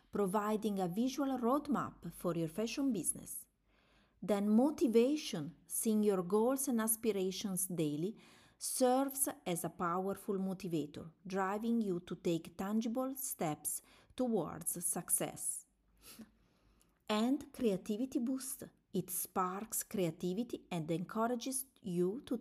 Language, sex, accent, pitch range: English, female, Italian, 175-245 Hz